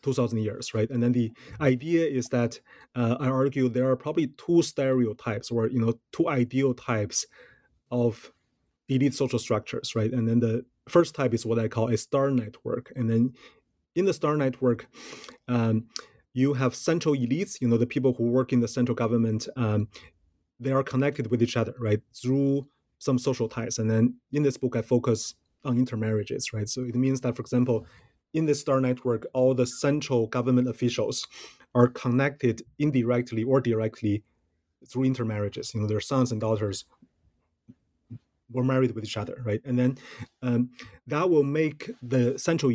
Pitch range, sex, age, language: 115-135 Hz, male, 30-49, English